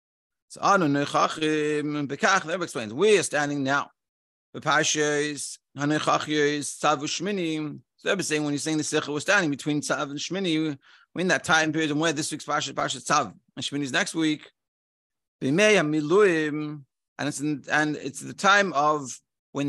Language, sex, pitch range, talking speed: English, male, 145-180 Hz, 130 wpm